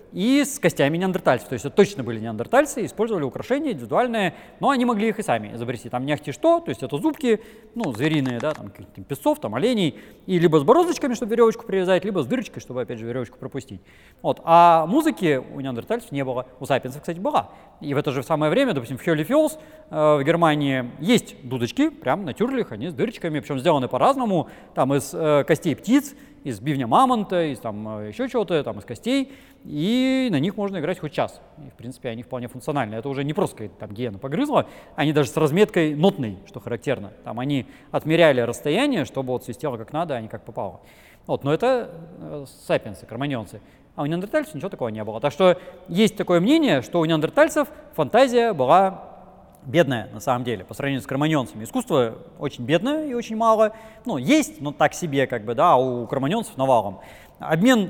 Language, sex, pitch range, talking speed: Russian, male, 130-220 Hz, 190 wpm